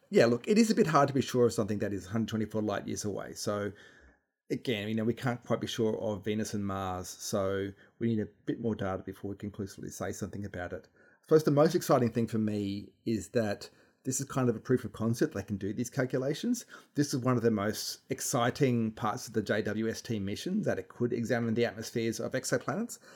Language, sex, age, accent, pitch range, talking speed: English, male, 30-49, Australian, 105-130 Hz, 230 wpm